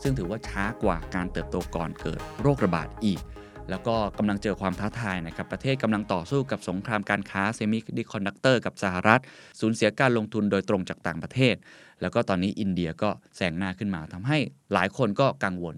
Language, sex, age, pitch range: Thai, male, 20-39, 90-115 Hz